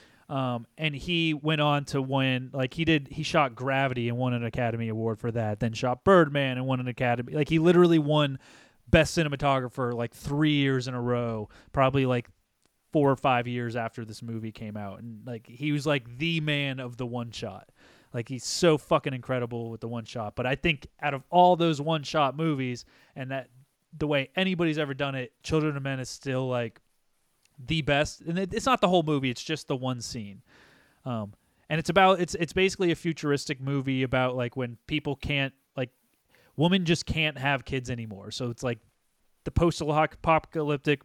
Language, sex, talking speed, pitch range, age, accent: English, male, 190 wpm, 125-155 Hz, 30-49, American